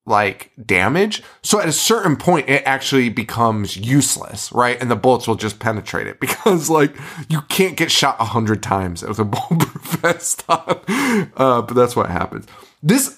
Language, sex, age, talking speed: English, male, 20-39, 170 wpm